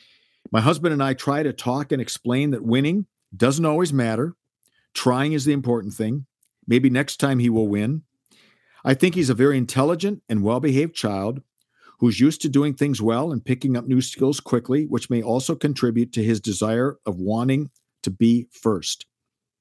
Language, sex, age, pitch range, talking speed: English, male, 50-69, 115-145 Hz, 180 wpm